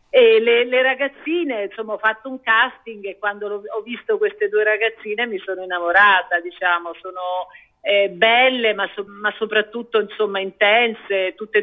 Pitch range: 190-220 Hz